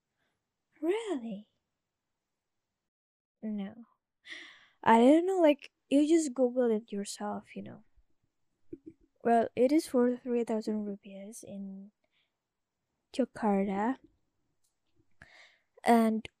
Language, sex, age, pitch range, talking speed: English, female, 20-39, 210-285 Hz, 85 wpm